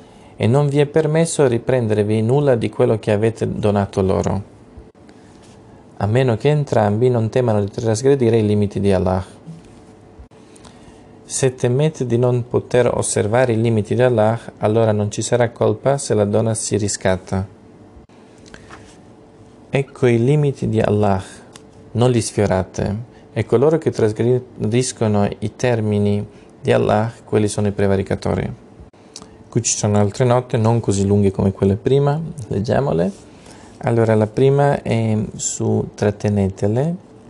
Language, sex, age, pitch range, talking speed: Italian, male, 40-59, 105-125 Hz, 135 wpm